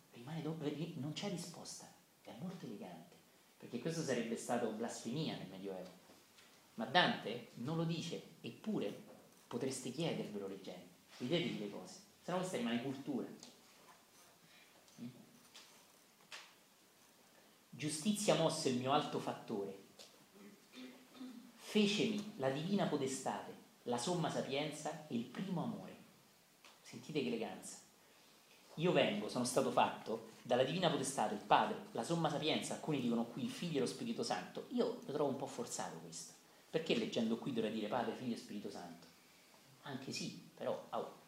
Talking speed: 135 wpm